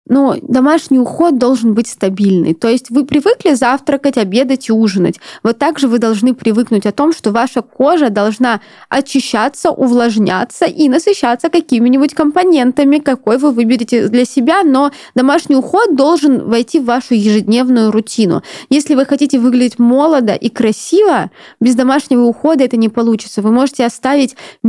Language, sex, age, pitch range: Russian, female, 20-39, 220-280 Hz